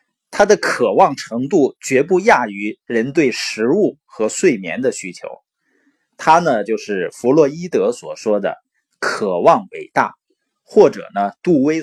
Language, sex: Chinese, male